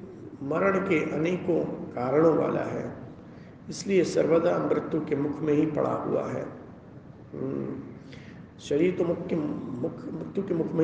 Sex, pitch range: male, 145-175 Hz